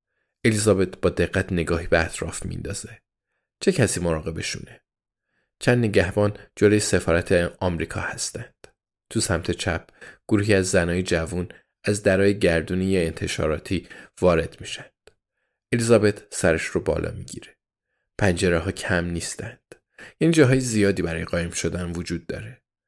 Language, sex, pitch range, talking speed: Persian, male, 90-110 Hz, 120 wpm